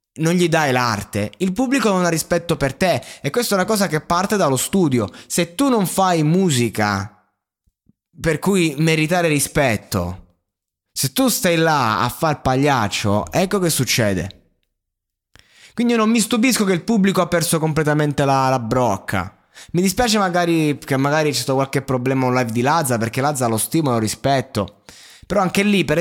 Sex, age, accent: male, 20-39, native